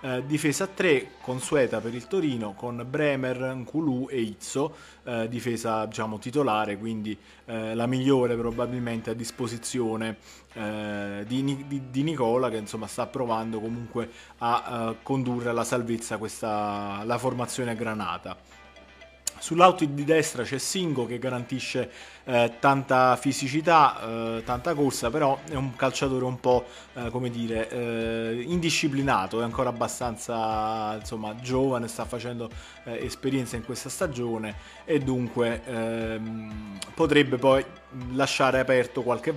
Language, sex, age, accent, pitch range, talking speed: Italian, male, 30-49, native, 115-130 Hz, 135 wpm